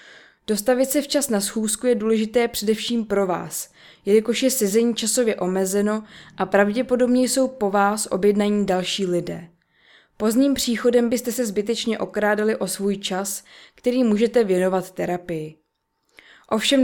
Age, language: 20-39, Czech